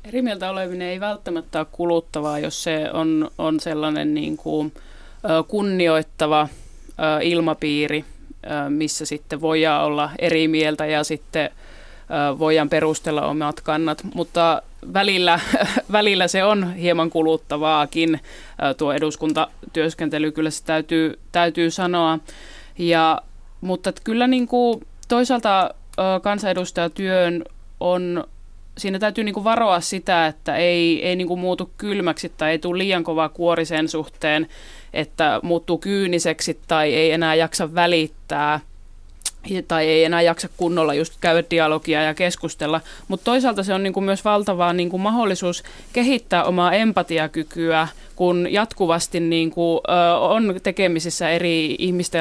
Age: 30-49